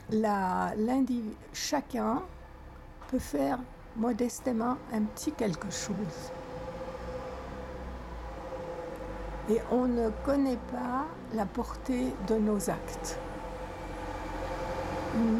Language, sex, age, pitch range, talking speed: French, female, 60-79, 170-230 Hz, 80 wpm